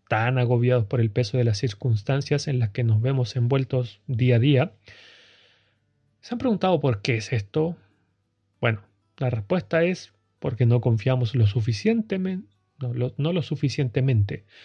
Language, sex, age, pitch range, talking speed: Spanish, male, 30-49, 115-160 Hz, 150 wpm